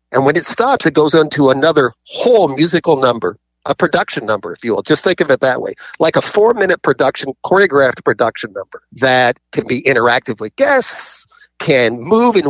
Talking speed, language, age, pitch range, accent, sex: 190 wpm, English, 50-69, 125-180 Hz, American, male